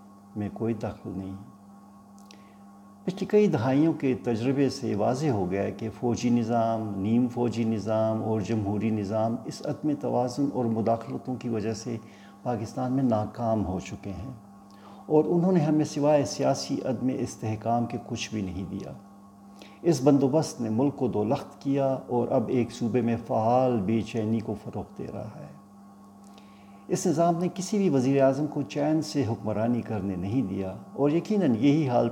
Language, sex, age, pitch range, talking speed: Urdu, male, 50-69, 100-125 Hz, 165 wpm